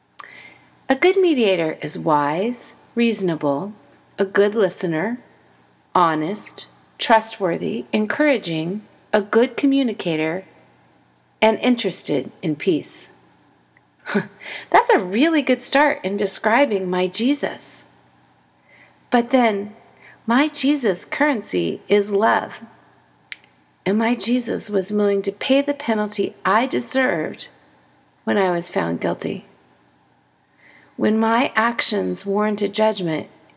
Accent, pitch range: American, 180-235 Hz